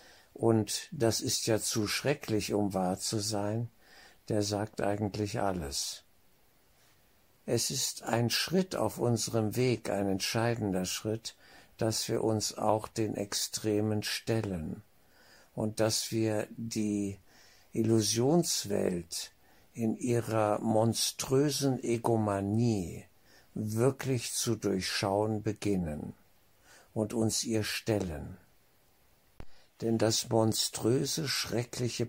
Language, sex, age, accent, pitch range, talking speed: German, male, 60-79, German, 105-115 Hz, 95 wpm